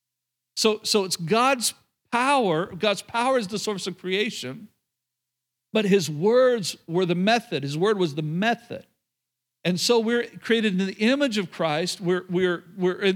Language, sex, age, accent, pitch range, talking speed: English, male, 50-69, American, 160-215 Hz, 165 wpm